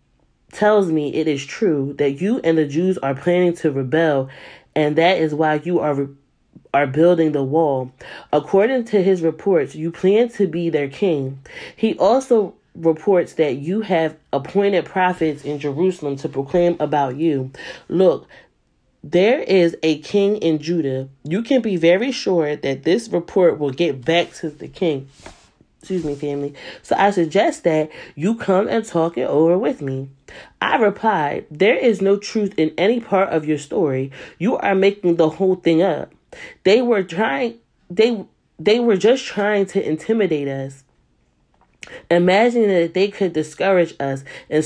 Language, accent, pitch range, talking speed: English, American, 150-200 Hz, 165 wpm